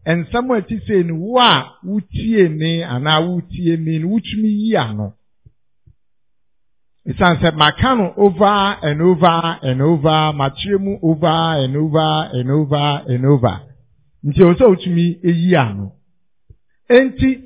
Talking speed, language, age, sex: 125 wpm, English, 60-79, male